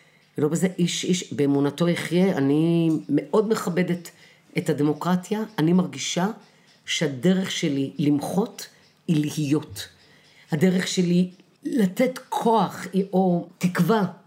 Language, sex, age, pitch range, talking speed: Hebrew, female, 50-69, 155-190 Hz, 100 wpm